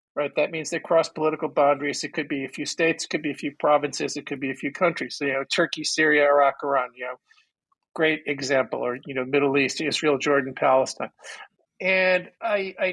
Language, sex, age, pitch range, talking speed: English, male, 50-69, 140-175 Hz, 220 wpm